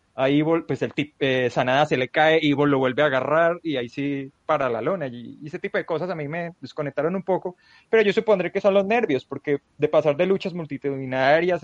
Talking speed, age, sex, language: 235 wpm, 20-39, male, Spanish